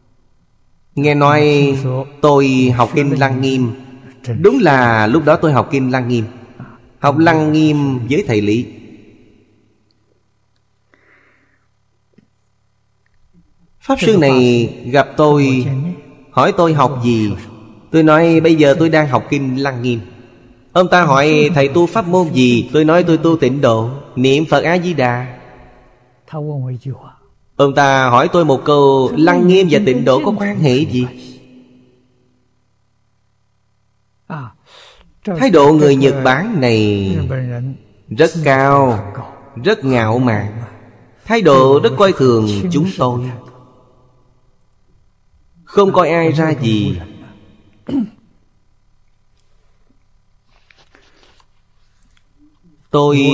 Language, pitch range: Vietnamese, 115-145 Hz